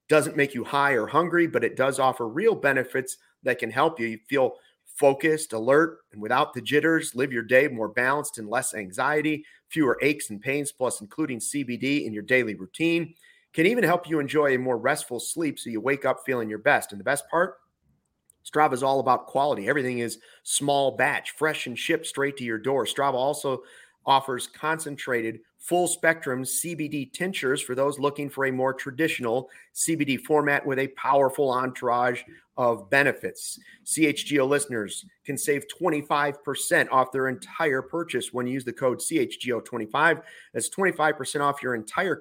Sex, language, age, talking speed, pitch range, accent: male, English, 30-49, 170 wpm, 125-155 Hz, American